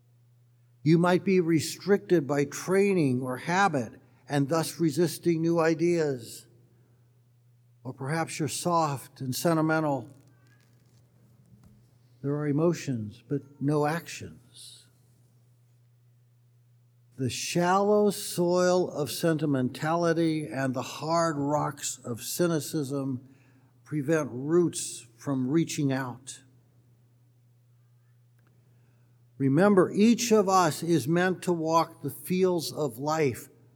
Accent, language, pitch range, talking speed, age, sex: American, English, 120-165 Hz, 95 wpm, 60-79, male